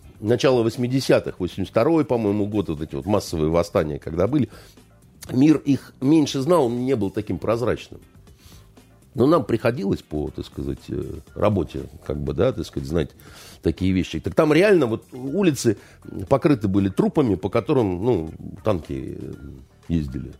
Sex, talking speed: male, 145 wpm